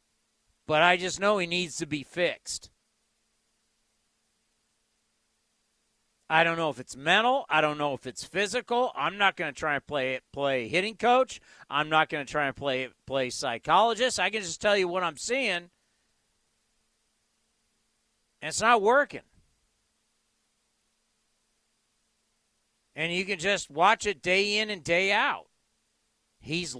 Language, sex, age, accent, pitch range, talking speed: English, male, 50-69, American, 160-215 Hz, 145 wpm